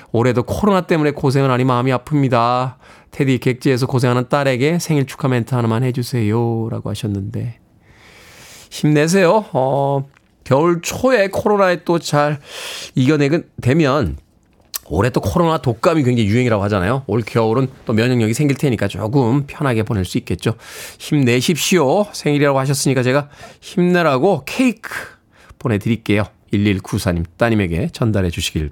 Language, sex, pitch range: Korean, male, 115-155 Hz